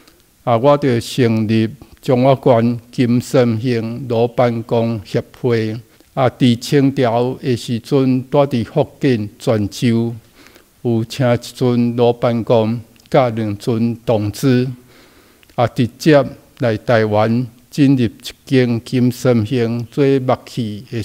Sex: male